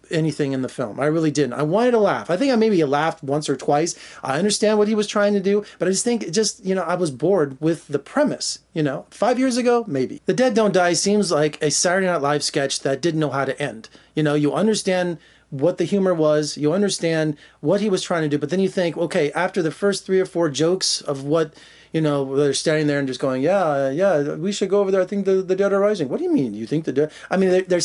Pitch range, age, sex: 150-195 Hz, 30-49, male